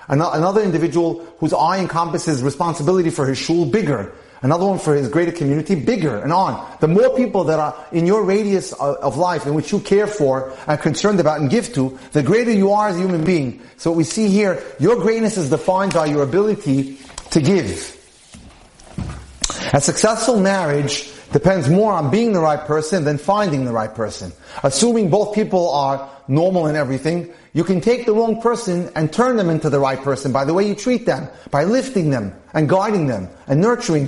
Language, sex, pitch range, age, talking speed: English, male, 145-200 Hz, 30-49, 195 wpm